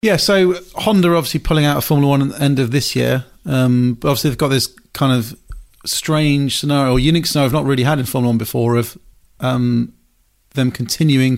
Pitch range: 120-140 Hz